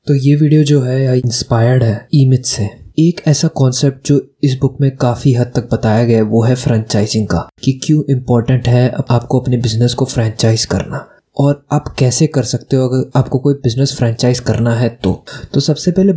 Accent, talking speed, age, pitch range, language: native, 195 wpm, 20-39, 125-155 Hz, Hindi